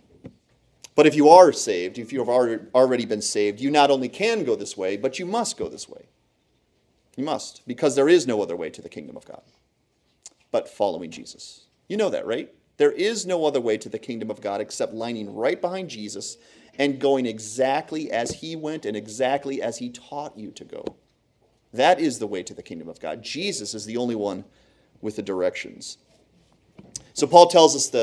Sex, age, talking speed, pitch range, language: male, 30-49, 200 wpm, 115-155 Hz, English